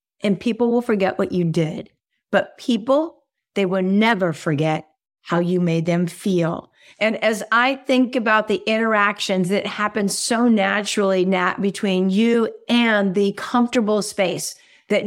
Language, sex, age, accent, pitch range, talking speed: English, female, 50-69, American, 190-240 Hz, 145 wpm